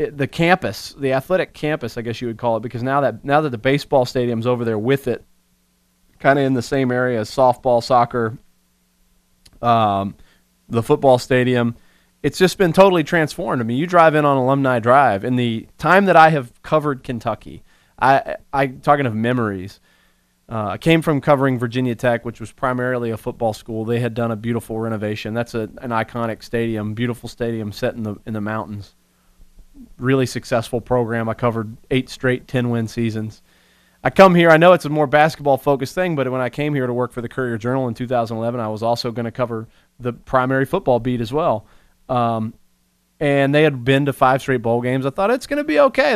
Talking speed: 205 wpm